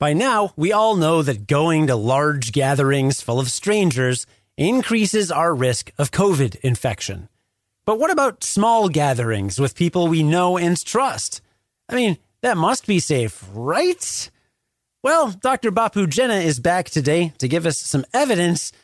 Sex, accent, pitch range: male, American, 125-180 Hz